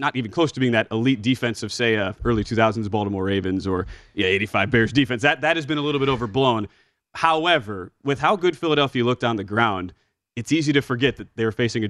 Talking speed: 230 wpm